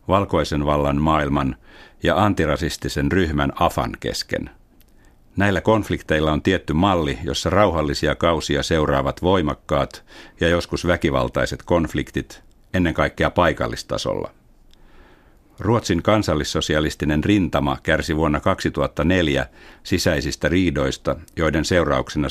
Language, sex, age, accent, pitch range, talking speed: Finnish, male, 60-79, native, 70-90 Hz, 95 wpm